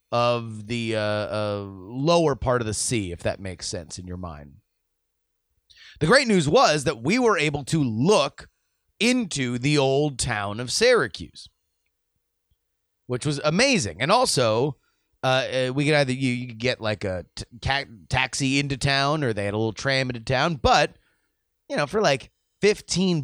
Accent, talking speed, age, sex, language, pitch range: American, 170 wpm, 30-49, male, English, 95-150 Hz